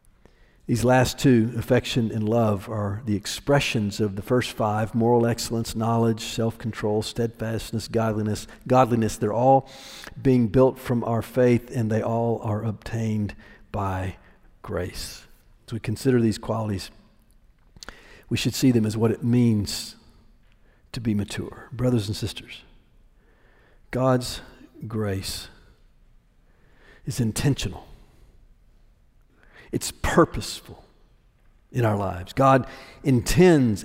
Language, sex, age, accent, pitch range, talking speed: English, male, 50-69, American, 110-130 Hz, 115 wpm